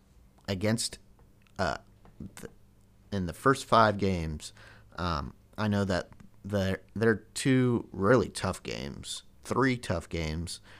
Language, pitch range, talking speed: English, 90-105 Hz, 115 wpm